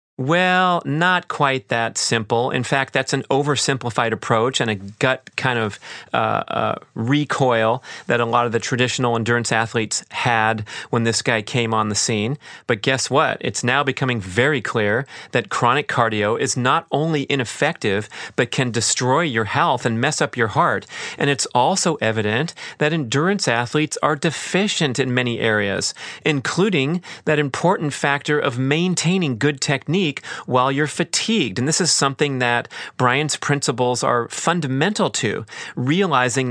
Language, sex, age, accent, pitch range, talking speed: English, male, 40-59, American, 120-150 Hz, 155 wpm